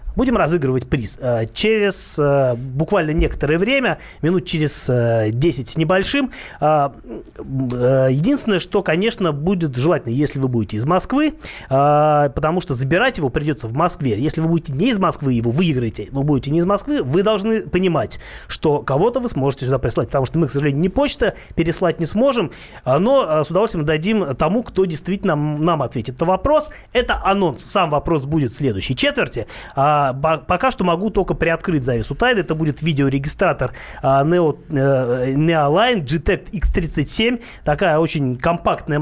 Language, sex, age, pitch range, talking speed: Russian, male, 30-49, 135-190 Hz, 150 wpm